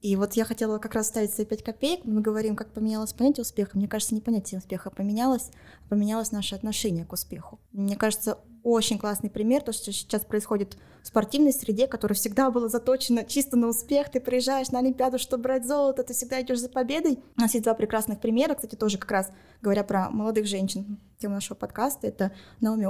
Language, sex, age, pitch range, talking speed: Russian, female, 20-39, 205-250 Hz, 205 wpm